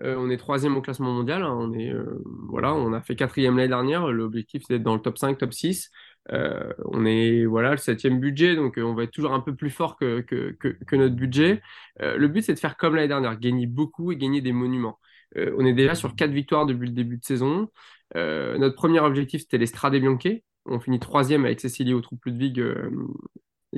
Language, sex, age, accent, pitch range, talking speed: French, male, 20-39, French, 125-150 Hz, 230 wpm